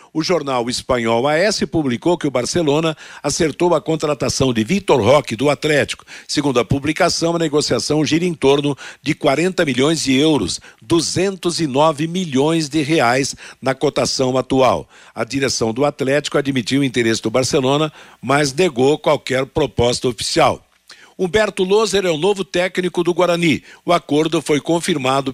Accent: Brazilian